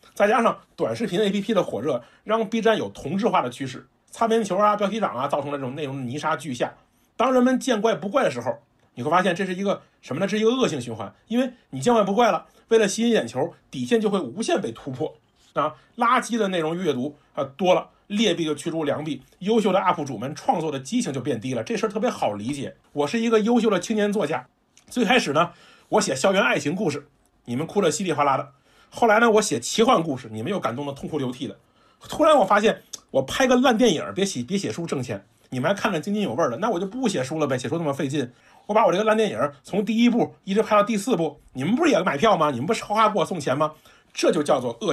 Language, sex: Chinese, male